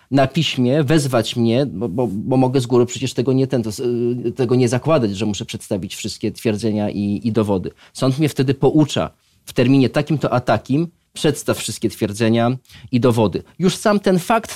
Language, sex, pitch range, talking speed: Polish, male, 120-140 Hz, 170 wpm